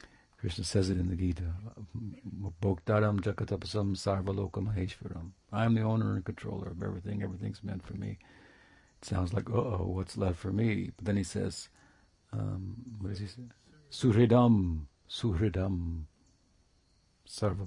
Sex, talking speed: male, 135 wpm